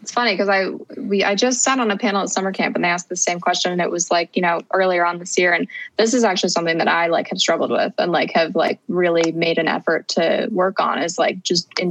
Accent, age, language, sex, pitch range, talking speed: American, 20-39, English, female, 170-205 Hz, 280 wpm